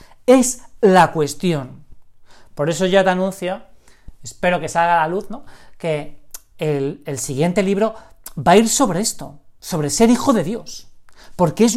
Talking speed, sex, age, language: 165 wpm, male, 40-59, Spanish